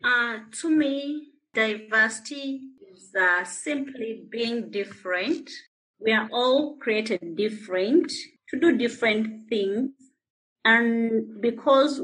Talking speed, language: 100 wpm, English